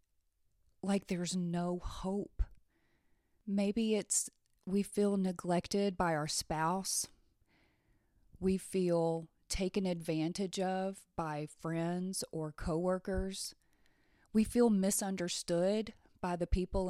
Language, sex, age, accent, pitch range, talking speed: English, female, 30-49, American, 170-200 Hz, 95 wpm